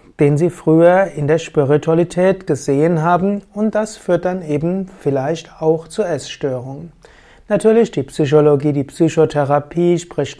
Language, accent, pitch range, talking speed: German, German, 140-175 Hz, 135 wpm